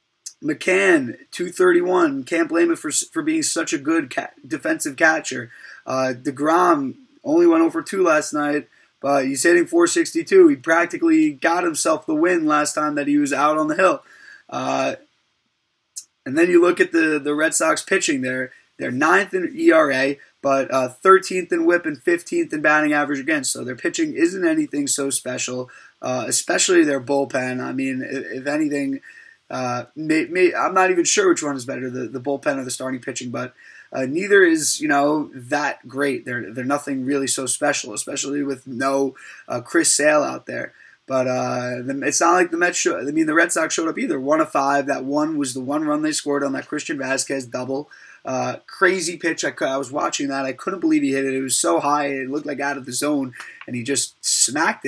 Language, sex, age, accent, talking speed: English, male, 20-39, American, 205 wpm